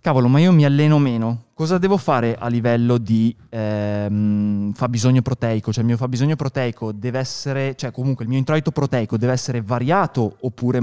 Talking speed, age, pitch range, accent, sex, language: 175 wpm, 20-39, 115-135 Hz, native, male, Italian